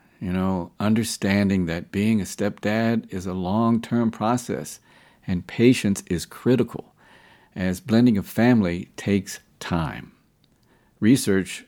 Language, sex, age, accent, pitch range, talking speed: English, male, 50-69, American, 95-115 Hz, 115 wpm